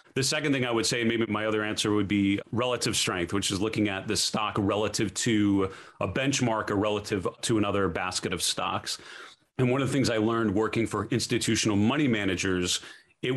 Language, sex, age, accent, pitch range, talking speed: English, male, 30-49, American, 100-115 Hz, 200 wpm